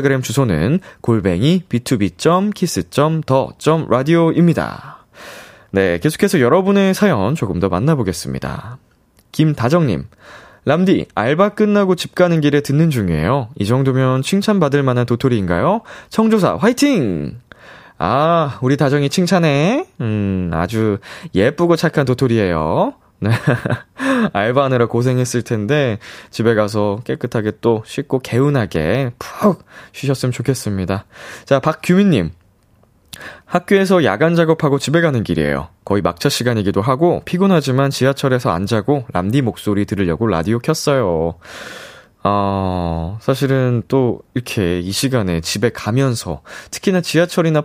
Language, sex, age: Korean, male, 20-39